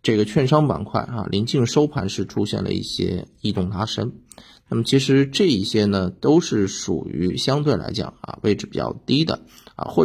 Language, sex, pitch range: Chinese, male, 100-135 Hz